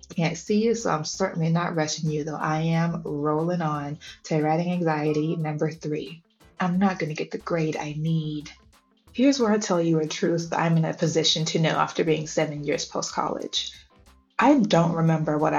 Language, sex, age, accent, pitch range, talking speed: English, female, 20-39, American, 155-200 Hz, 195 wpm